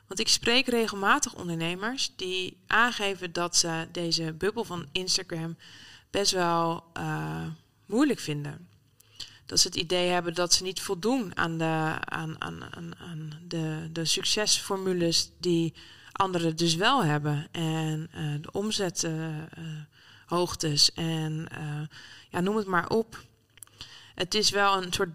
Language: Dutch